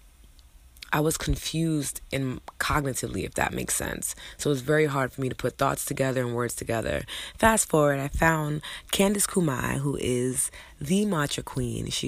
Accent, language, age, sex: American, English, 20-39, female